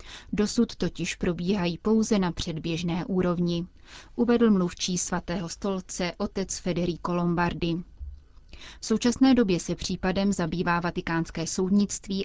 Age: 30-49